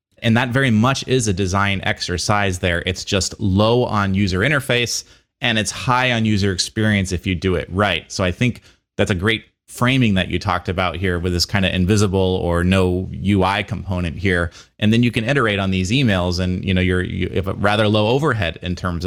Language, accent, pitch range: English, American, 90-115 Hz